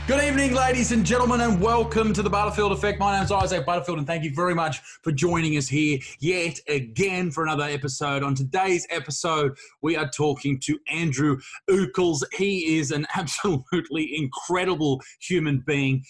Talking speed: 170 wpm